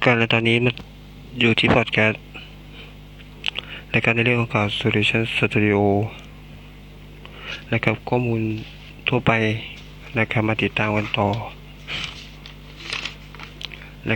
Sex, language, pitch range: male, Thai, 105-115 Hz